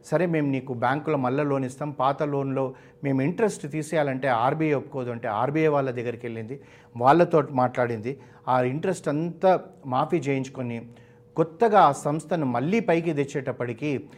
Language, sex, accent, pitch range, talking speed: Telugu, male, native, 125-150 Hz, 135 wpm